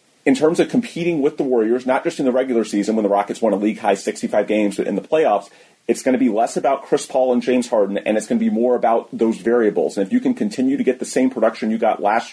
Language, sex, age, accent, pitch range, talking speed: English, male, 30-49, American, 110-130 Hz, 280 wpm